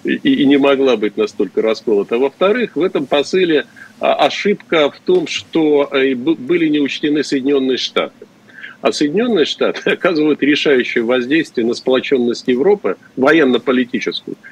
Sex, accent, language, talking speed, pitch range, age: male, native, Russian, 125 wpm, 135-210 Hz, 50-69